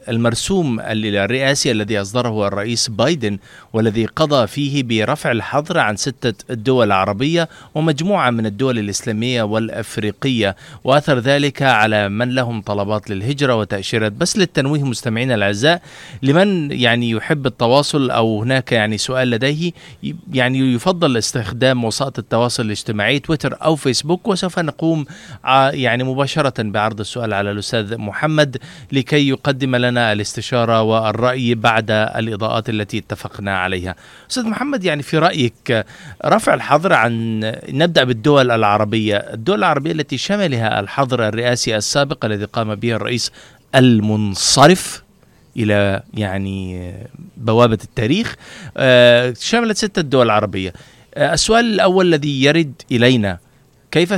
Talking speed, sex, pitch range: 120 wpm, male, 110-145 Hz